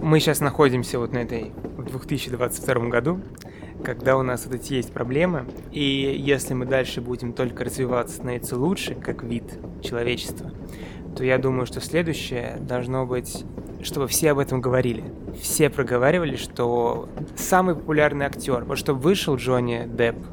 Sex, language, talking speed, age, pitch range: male, Russian, 150 wpm, 20-39, 120-145 Hz